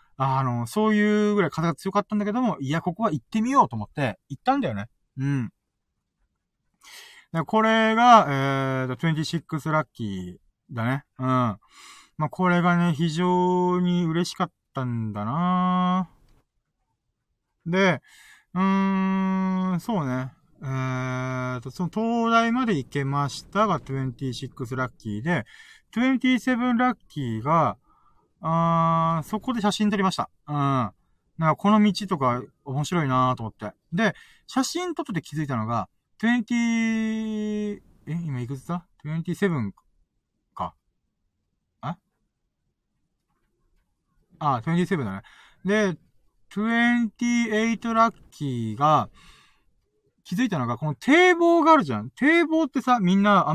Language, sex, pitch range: Japanese, male, 135-210 Hz